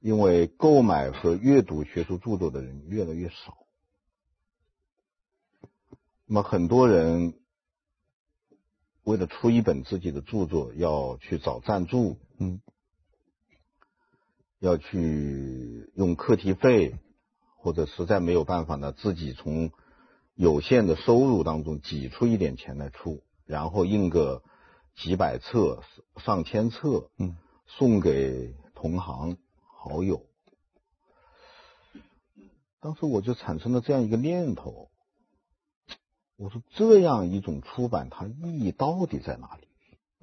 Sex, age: male, 50-69